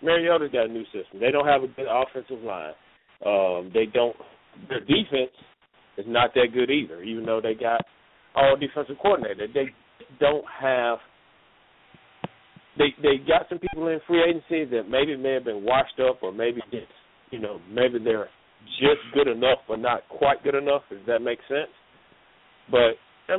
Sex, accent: male, American